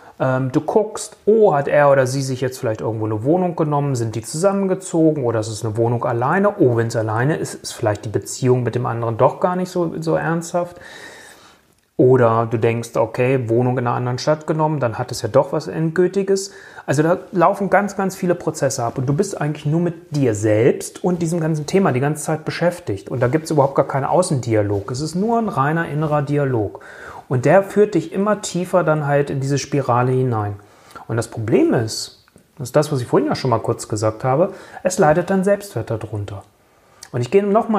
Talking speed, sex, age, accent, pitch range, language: 215 wpm, male, 30-49, German, 125-180 Hz, German